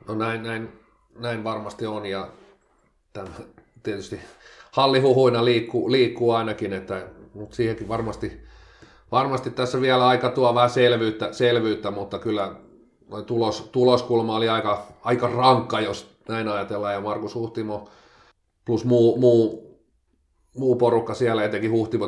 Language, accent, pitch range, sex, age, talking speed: Finnish, native, 100-115 Hz, male, 40-59, 130 wpm